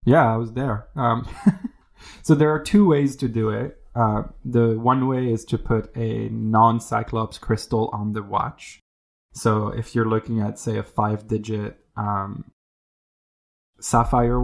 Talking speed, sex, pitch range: 145 wpm, male, 110-120 Hz